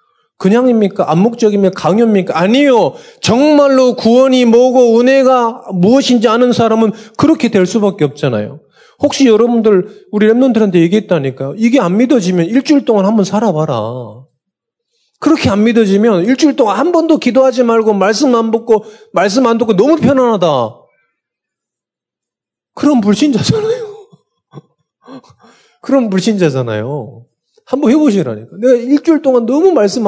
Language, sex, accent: Korean, male, native